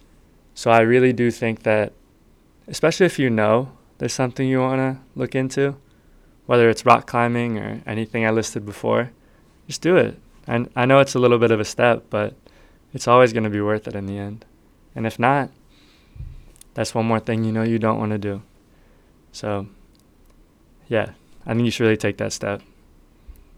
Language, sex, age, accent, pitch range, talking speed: English, male, 20-39, American, 110-125 Hz, 190 wpm